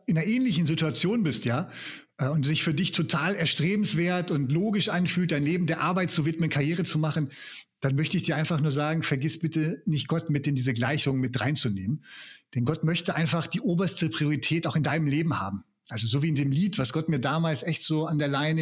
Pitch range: 145-170 Hz